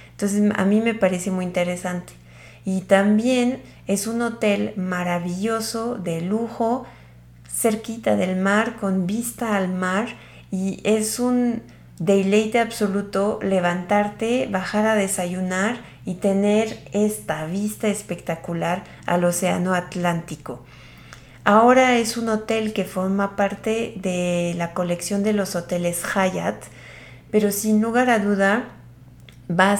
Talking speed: 120 wpm